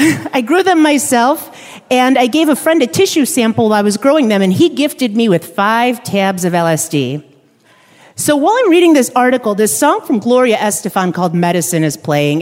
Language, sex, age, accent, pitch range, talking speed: English, female, 40-59, American, 175-255 Hz, 200 wpm